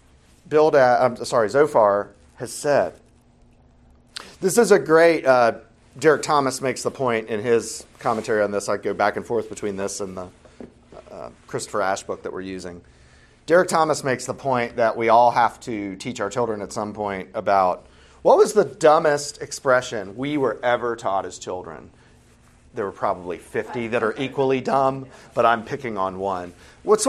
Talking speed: 175 wpm